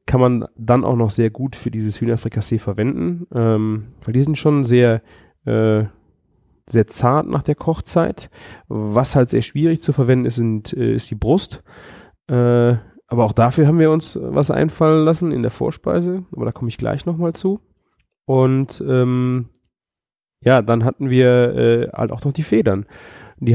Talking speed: 175 wpm